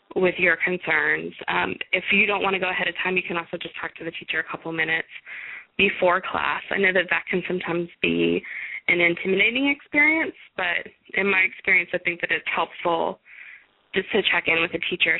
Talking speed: 205 wpm